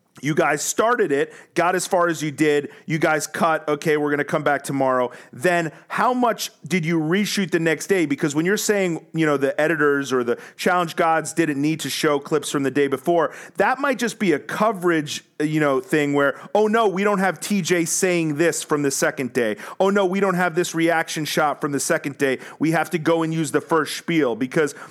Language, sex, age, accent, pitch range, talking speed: English, male, 30-49, American, 145-185 Hz, 225 wpm